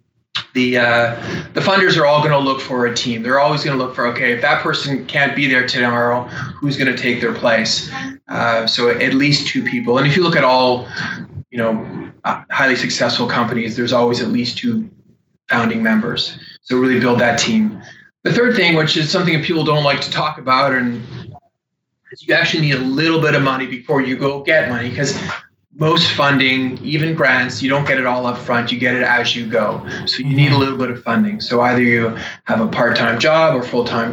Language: English